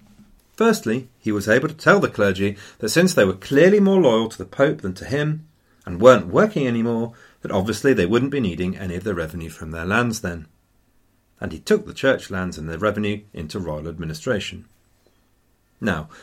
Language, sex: English, male